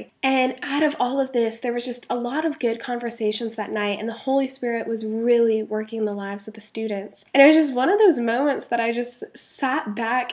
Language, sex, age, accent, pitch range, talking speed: English, female, 10-29, American, 215-255 Hz, 240 wpm